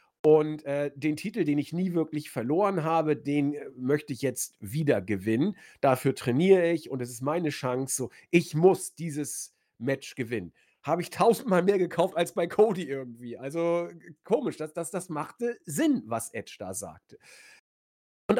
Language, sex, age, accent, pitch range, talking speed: German, male, 40-59, German, 135-200 Hz, 165 wpm